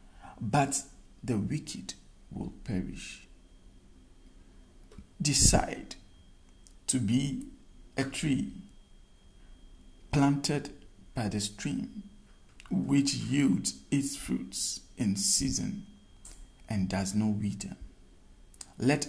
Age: 50-69